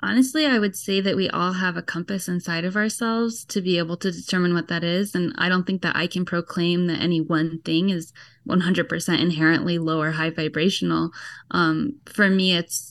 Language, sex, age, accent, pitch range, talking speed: English, female, 10-29, American, 165-190 Hz, 205 wpm